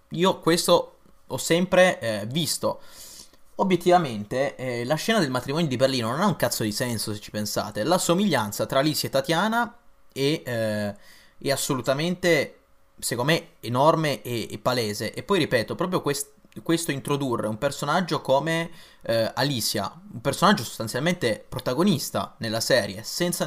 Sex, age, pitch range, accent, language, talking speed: male, 20-39, 120-170 Hz, native, Italian, 150 wpm